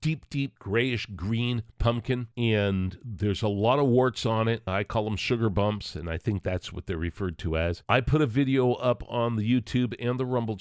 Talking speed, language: 215 wpm, English